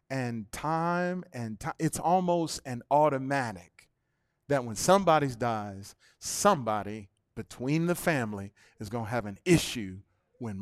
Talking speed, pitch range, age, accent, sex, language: 130 wpm, 120-185 Hz, 40-59, American, male, English